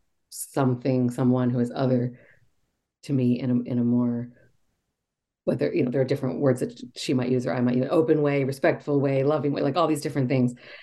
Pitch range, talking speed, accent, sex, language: 130-155 Hz, 210 wpm, American, female, English